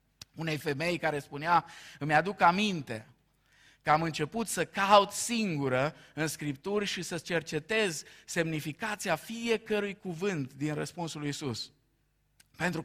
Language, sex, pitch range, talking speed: Romanian, male, 150-205 Hz, 120 wpm